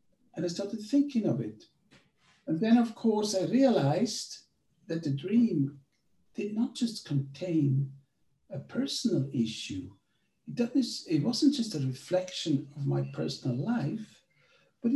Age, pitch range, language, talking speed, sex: 60-79, 135-200 Hz, English, 130 wpm, male